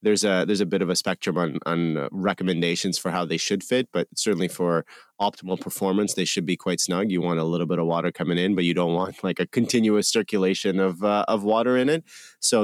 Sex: male